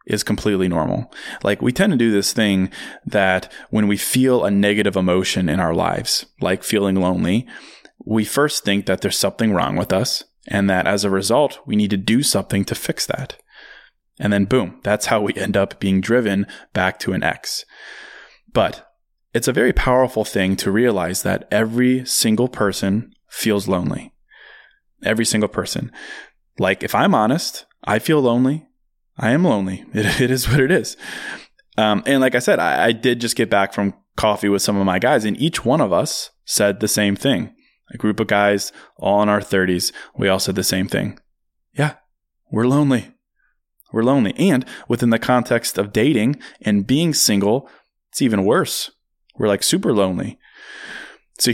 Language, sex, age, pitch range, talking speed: English, male, 20-39, 100-125 Hz, 180 wpm